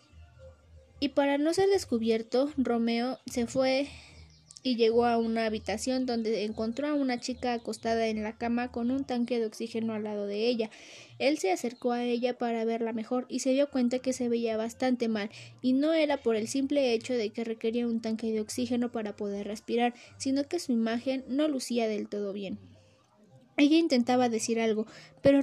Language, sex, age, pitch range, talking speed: Spanish, female, 20-39, 230-270 Hz, 185 wpm